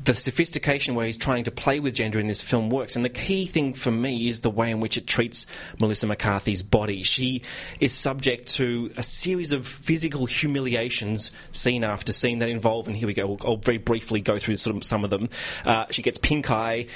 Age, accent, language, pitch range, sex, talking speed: 30-49, Australian, English, 115-135 Hz, male, 210 wpm